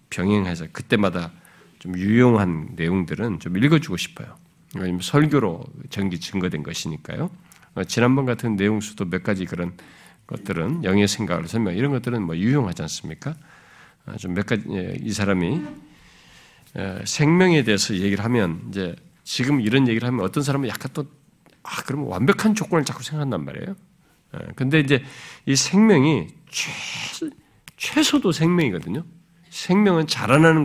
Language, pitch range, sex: Korean, 100-155 Hz, male